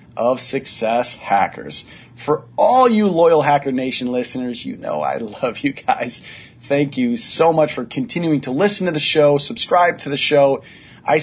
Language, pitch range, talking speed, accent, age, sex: English, 120-155 Hz, 170 wpm, American, 30-49, male